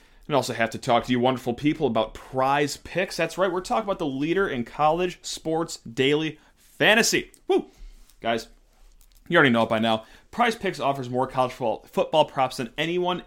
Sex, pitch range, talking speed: male, 125-170 Hz, 185 wpm